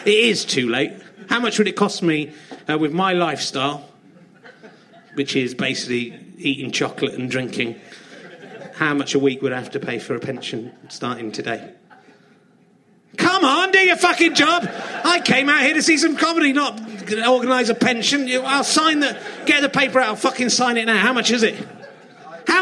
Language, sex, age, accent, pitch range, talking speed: English, male, 30-49, British, 190-255 Hz, 185 wpm